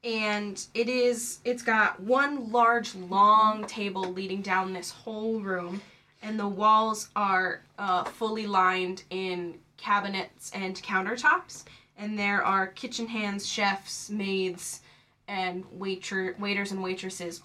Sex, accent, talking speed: female, American, 120 wpm